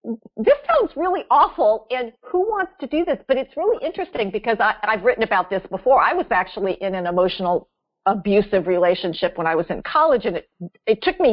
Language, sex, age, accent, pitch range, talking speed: English, female, 50-69, American, 200-285 Hz, 205 wpm